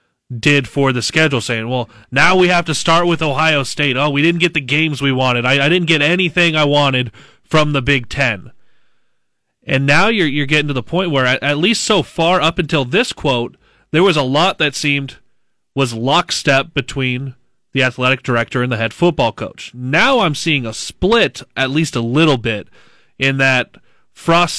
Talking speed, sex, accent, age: 200 wpm, male, American, 30-49